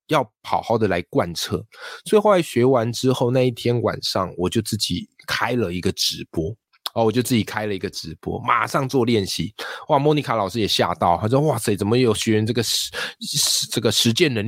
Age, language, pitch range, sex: 20-39, Chinese, 105-140 Hz, male